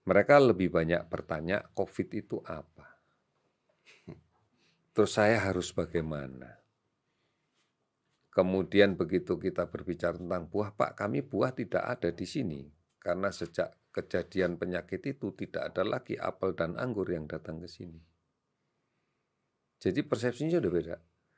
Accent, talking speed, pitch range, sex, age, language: native, 120 wpm, 85-135 Hz, male, 50-69, Indonesian